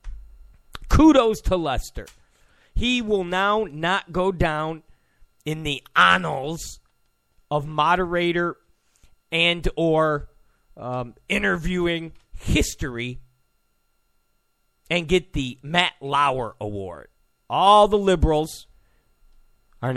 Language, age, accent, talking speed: English, 40-59, American, 85 wpm